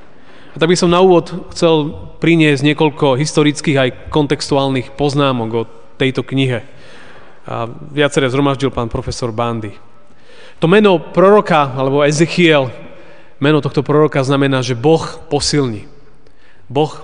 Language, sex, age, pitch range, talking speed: Slovak, male, 30-49, 135-170 Hz, 125 wpm